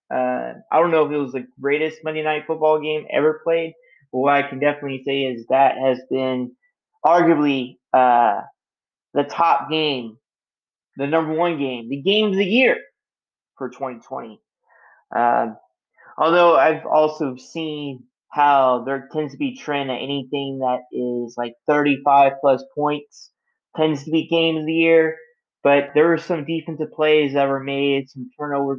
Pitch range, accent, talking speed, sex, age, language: 130-155 Hz, American, 160 wpm, male, 20-39, English